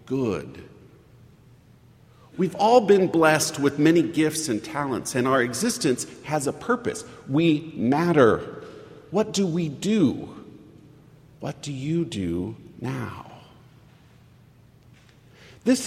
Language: English